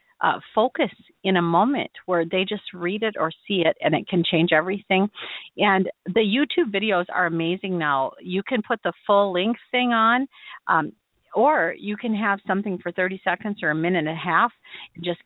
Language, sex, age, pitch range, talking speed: English, female, 40-59, 175-225 Hz, 195 wpm